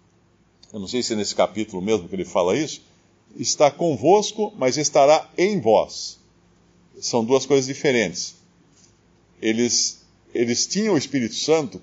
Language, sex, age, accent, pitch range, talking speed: Portuguese, male, 50-69, Brazilian, 115-155 Hz, 140 wpm